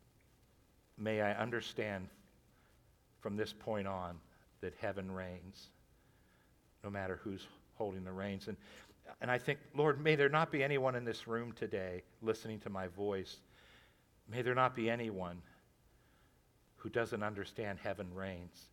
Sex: male